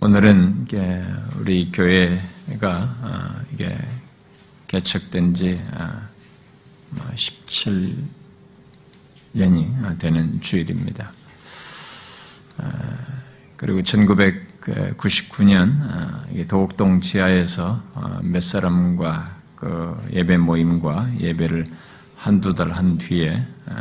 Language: Korean